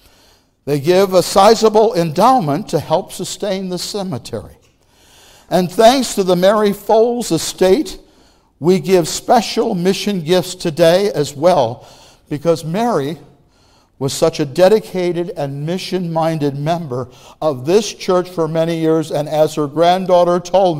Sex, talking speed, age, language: male, 130 wpm, 60-79, English